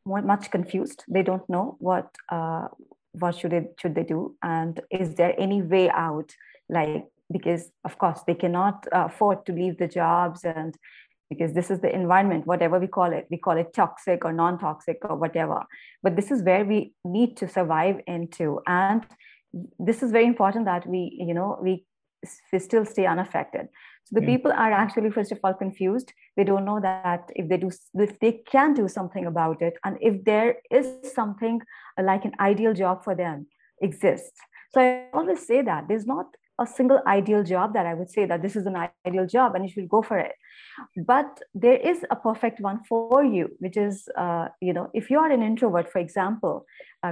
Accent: Indian